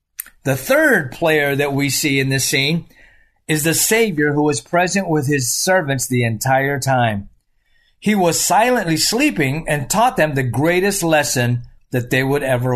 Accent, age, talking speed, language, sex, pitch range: American, 40-59, 165 wpm, English, male, 135-185 Hz